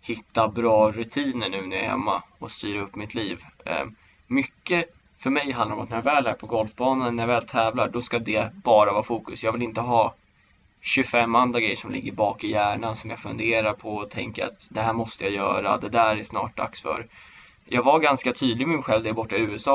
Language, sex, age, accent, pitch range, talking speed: Swedish, male, 20-39, native, 110-130 Hz, 230 wpm